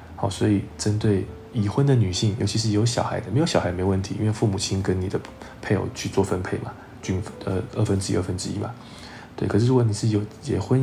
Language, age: Chinese, 20-39